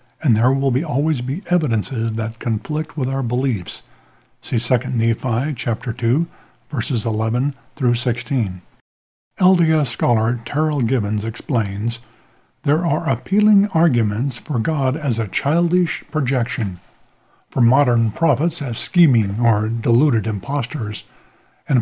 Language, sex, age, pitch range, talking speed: English, male, 50-69, 115-150 Hz, 125 wpm